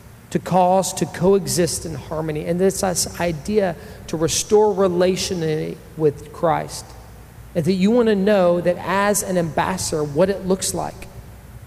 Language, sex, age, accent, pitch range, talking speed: English, male, 40-59, American, 150-185 Hz, 145 wpm